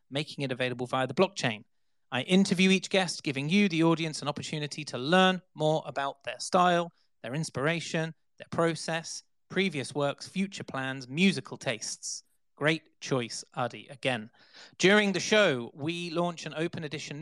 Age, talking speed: 30-49, 155 wpm